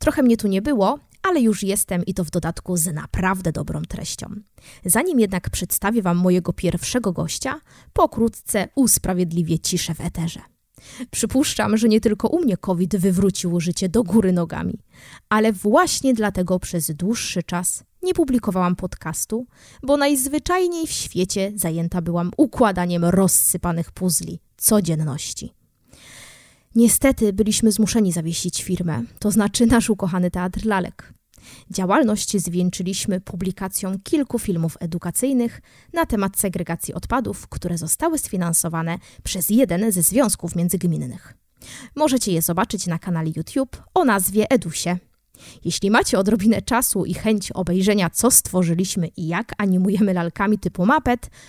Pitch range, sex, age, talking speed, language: 175-225 Hz, female, 20-39, 130 wpm, Polish